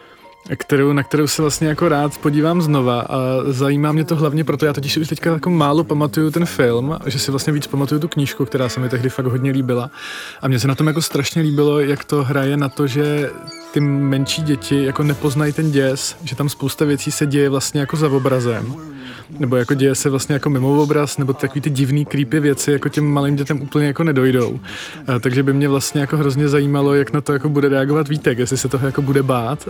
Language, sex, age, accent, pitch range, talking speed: Czech, male, 20-39, native, 135-150 Hz, 230 wpm